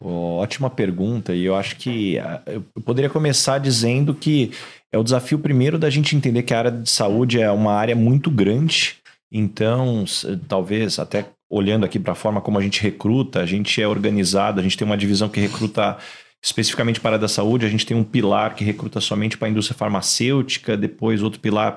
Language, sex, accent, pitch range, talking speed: Portuguese, male, Brazilian, 105-145 Hz, 200 wpm